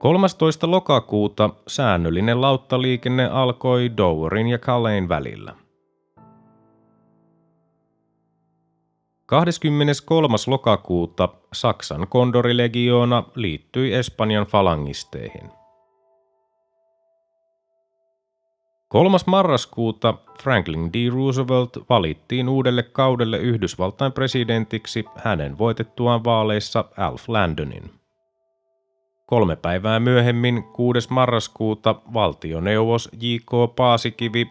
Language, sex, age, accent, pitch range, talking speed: Finnish, male, 30-49, native, 105-135 Hz, 70 wpm